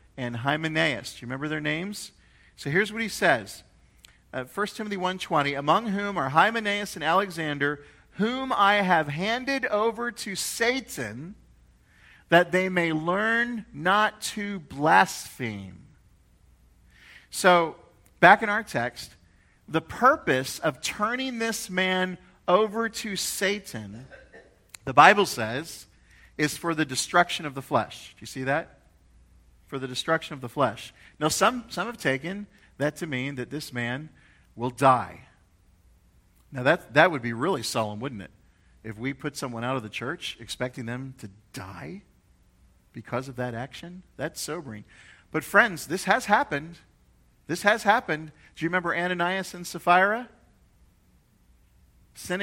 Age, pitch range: 40-59, 120-190 Hz